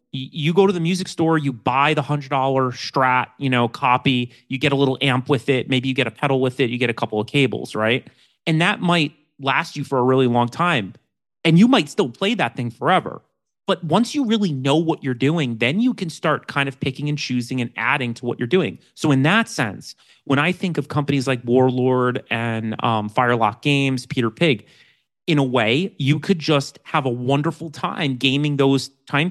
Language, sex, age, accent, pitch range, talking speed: English, male, 30-49, American, 125-155 Hz, 215 wpm